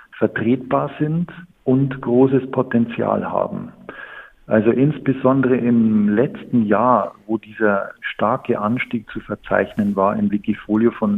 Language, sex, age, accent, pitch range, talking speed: German, male, 50-69, German, 110-135 Hz, 115 wpm